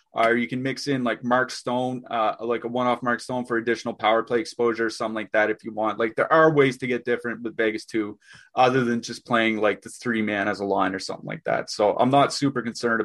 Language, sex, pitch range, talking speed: English, male, 115-130 Hz, 260 wpm